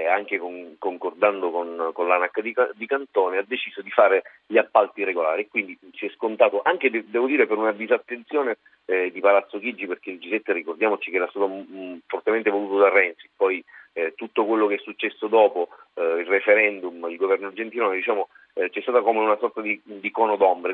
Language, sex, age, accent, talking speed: Italian, male, 40-59, native, 195 wpm